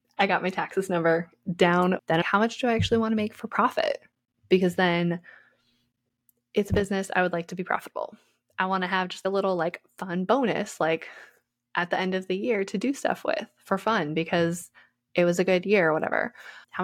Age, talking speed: 20-39, 215 wpm